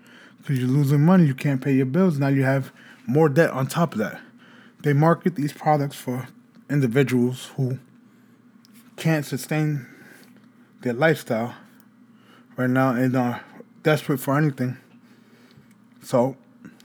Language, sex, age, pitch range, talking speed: English, male, 20-39, 135-220 Hz, 135 wpm